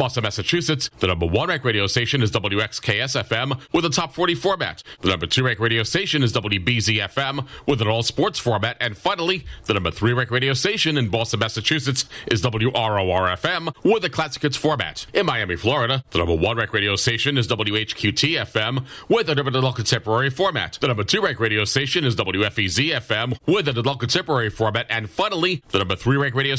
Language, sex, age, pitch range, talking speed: English, male, 40-59, 110-140 Hz, 195 wpm